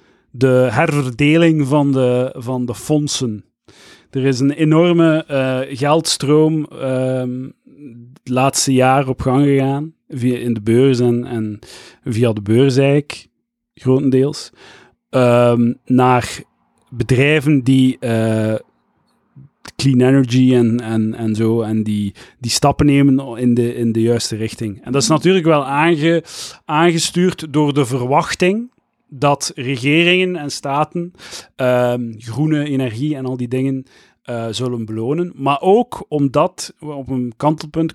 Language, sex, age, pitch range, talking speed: Dutch, male, 40-59, 125-155 Hz, 120 wpm